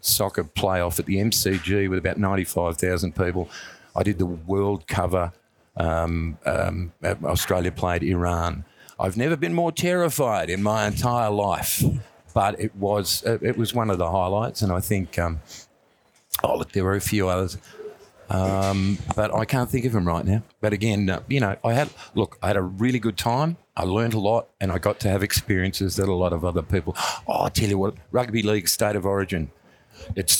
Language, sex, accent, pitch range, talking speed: English, male, Australian, 95-120 Hz, 195 wpm